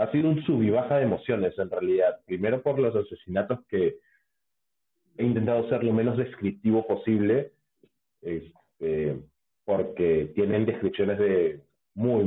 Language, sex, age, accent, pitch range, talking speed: Spanish, male, 40-59, Argentinian, 95-130 Hz, 140 wpm